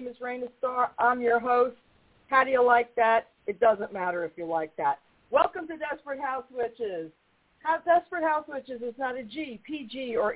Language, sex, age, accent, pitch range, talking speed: English, female, 50-69, American, 210-275 Hz, 190 wpm